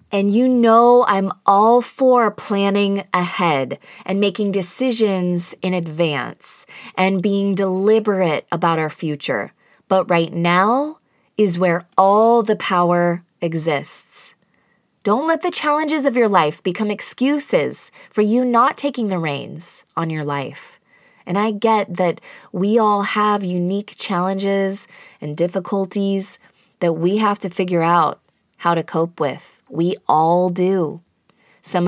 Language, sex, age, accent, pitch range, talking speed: English, female, 20-39, American, 175-215 Hz, 135 wpm